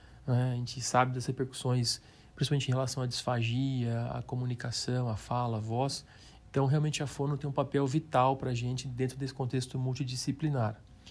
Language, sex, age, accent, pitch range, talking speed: Portuguese, male, 40-59, Brazilian, 130-160 Hz, 165 wpm